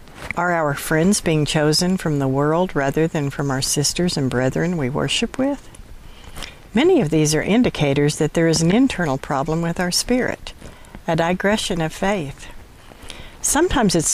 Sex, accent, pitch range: female, American, 145-200 Hz